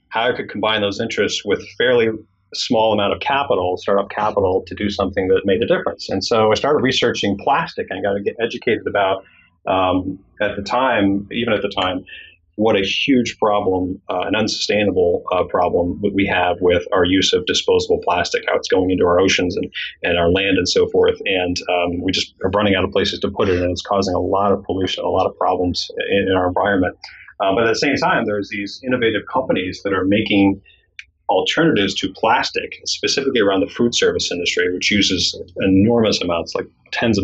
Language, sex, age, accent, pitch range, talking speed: English, male, 30-49, American, 95-120 Hz, 205 wpm